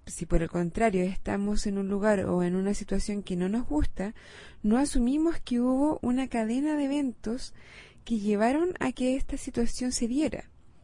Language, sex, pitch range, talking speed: Spanish, female, 195-265 Hz, 175 wpm